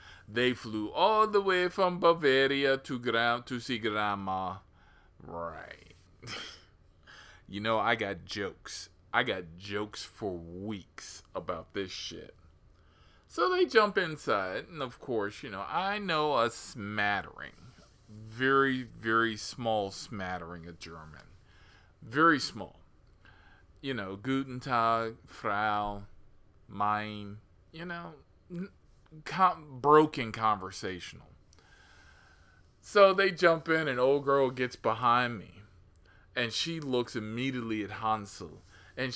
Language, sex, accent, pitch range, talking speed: English, male, American, 90-130 Hz, 115 wpm